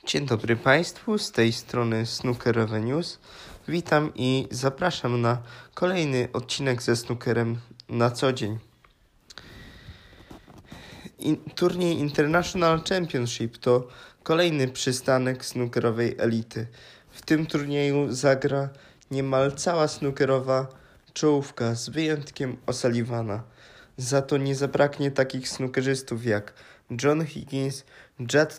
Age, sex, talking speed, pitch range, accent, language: 20-39, male, 100 wpm, 120-145 Hz, native, Polish